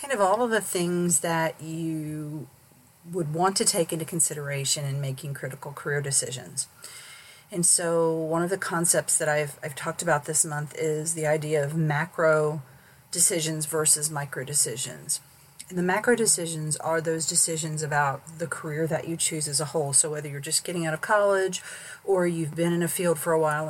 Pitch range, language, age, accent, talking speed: 145-165 Hz, English, 40-59, American, 185 wpm